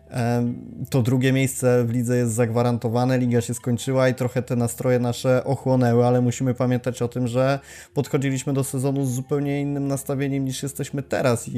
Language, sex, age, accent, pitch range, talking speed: Polish, male, 20-39, native, 120-135 Hz, 165 wpm